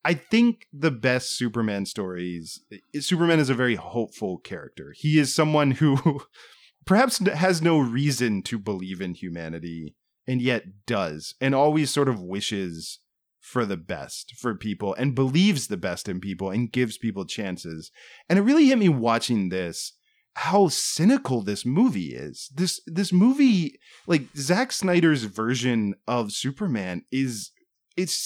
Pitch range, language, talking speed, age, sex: 105-165 Hz, English, 150 wpm, 30-49, male